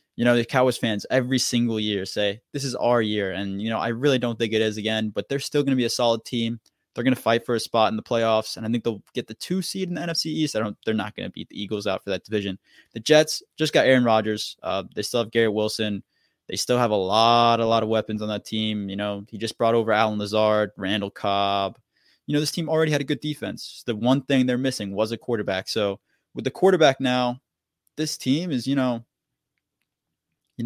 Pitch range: 110-135 Hz